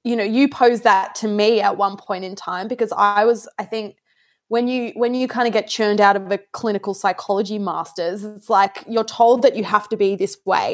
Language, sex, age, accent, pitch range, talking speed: English, female, 20-39, Australian, 205-255 Hz, 235 wpm